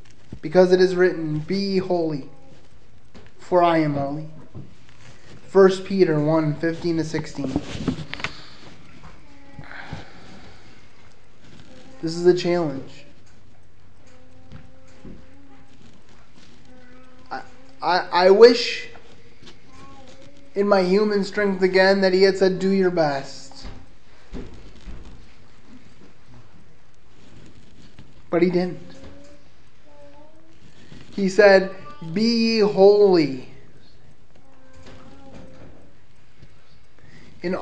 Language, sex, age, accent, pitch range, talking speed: English, male, 20-39, American, 150-195 Hz, 65 wpm